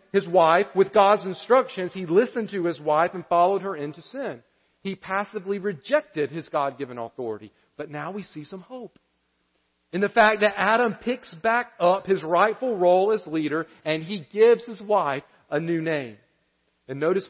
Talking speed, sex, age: 175 wpm, male, 40-59